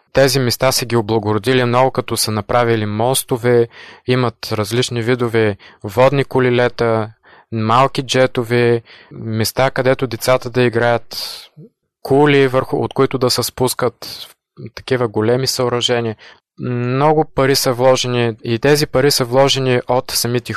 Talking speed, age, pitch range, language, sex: 125 wpm, 20-39, 110-130 Hz, Bulgarian, male